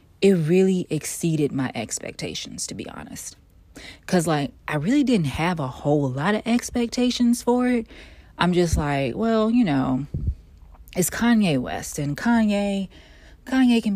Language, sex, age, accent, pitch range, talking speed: English, female, 30-49, American, 140-200 Hz, 145 wpm